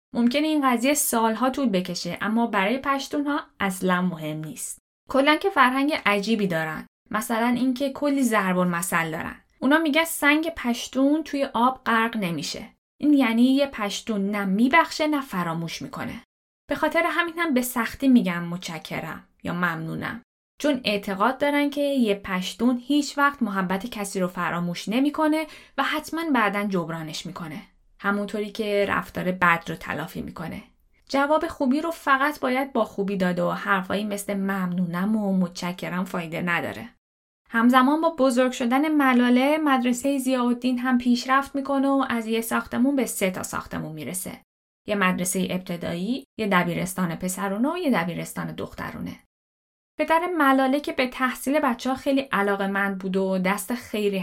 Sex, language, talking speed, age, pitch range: female, Persian, 150 wpm, 10-29, 185-275 Hz